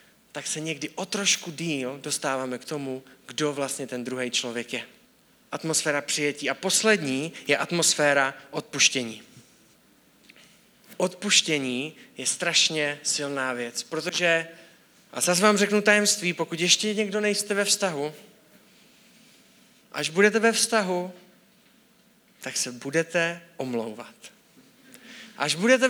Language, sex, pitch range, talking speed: Czech, male, 140-190 Hz, 115 wpm